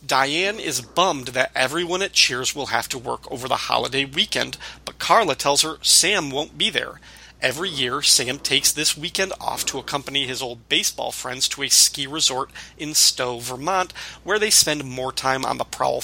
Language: English